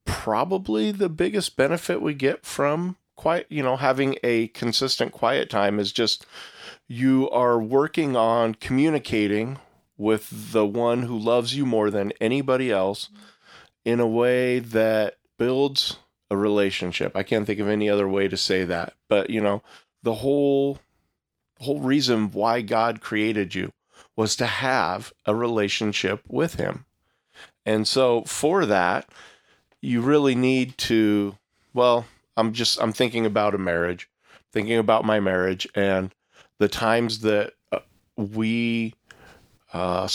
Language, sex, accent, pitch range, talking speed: English, male, American, 105-125 Hz, 140 wpm